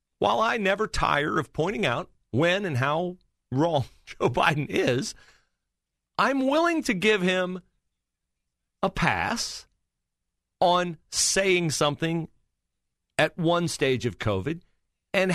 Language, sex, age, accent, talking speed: English, male, 40-59, American, 115 wpm